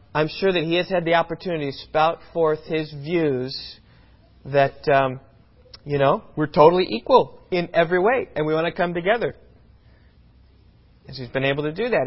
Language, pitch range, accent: English, 135-200 Hz, American